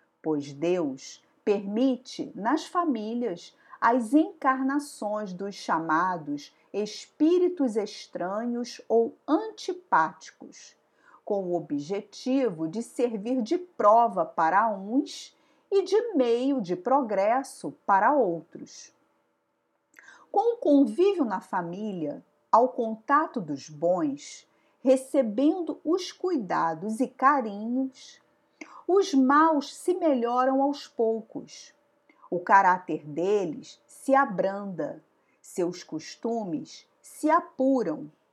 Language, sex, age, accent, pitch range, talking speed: Portuguese, female, 40-59, Brazilian, 195-285 Hz, 90 wpm